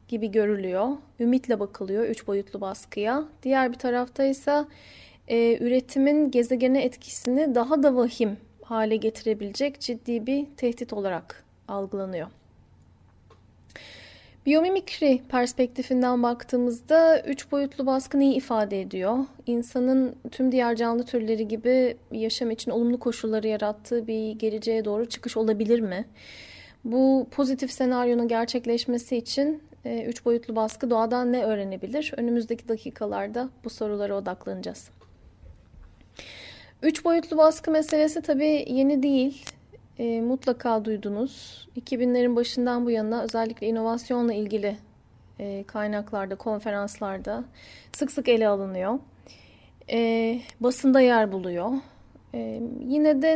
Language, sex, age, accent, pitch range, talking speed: Turkish, female, 10-29, native, 215-265 Hz, 105 wpm